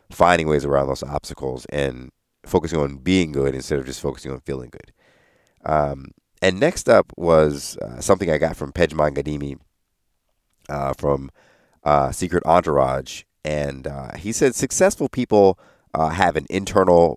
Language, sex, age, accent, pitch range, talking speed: English, male, 30-49, American, 75-95 Hz, 155 wpm